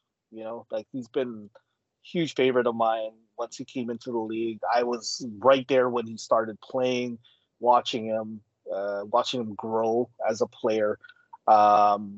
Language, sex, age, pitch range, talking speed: English, male, 30-49, 110-135 Hz, 170 wpm